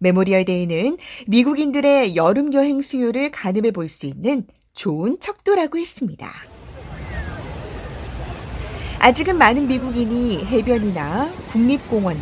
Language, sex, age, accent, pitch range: Korean, female, 40-59, native, 185-285 Hz